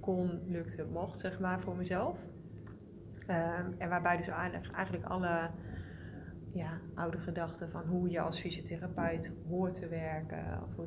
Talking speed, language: 145 wpm, Dutch